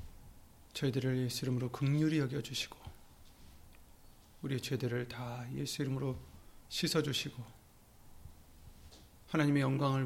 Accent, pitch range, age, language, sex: native, 100-140 Hz, 40-59, Korean, male